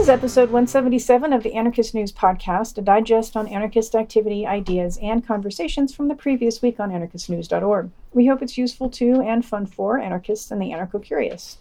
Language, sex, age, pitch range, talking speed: English, female, 40-59, 190-245 Hz, 180 wpm